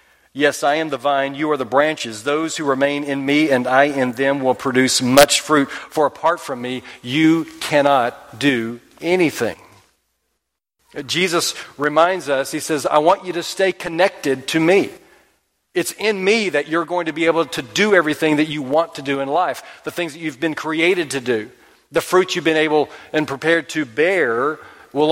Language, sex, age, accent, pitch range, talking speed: English, male, 40-59, American, 140-175 Hz, 190 wpm